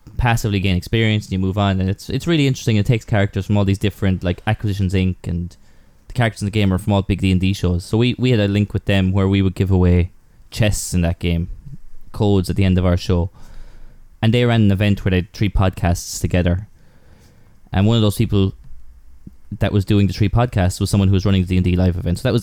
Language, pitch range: English, 90-110 Hz